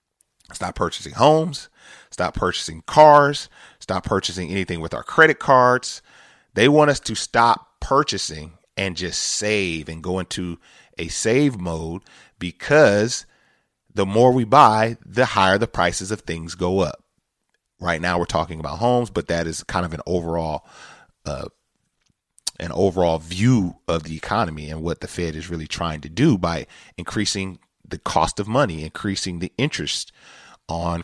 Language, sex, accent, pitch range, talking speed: English, male, American, 85-110 Hz, 155 wpm